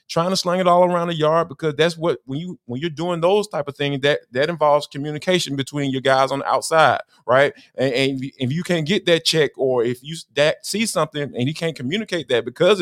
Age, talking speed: 20-39, 240 wpm